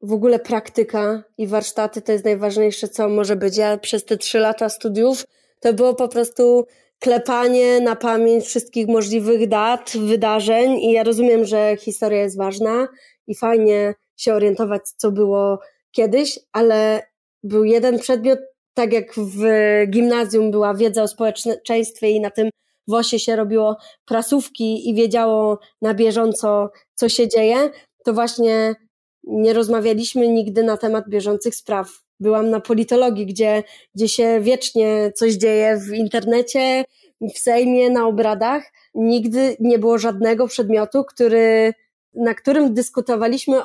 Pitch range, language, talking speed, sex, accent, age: 215-240 Hz, Polish, 140 wpm, female, native, 20-39